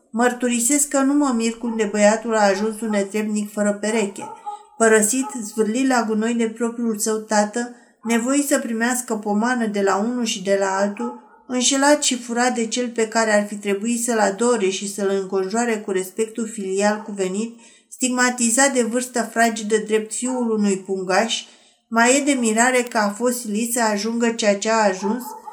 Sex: female